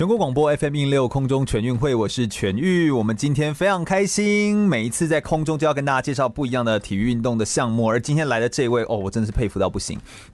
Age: 30-49